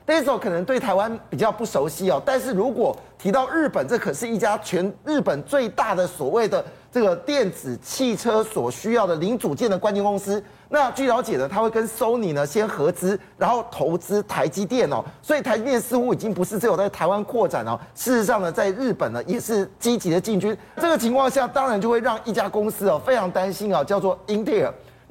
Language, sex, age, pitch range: Chinese, male, 30-49, 185-245 Hz